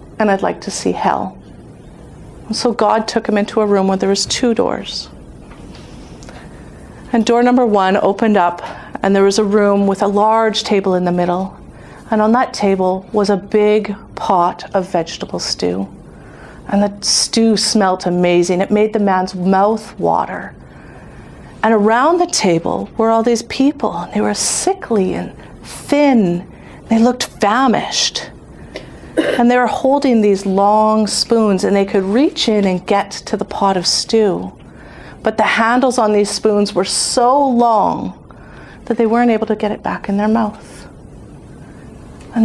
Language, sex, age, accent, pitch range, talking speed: English, female, 40-59, American, 195-230 Hz, 160 wpm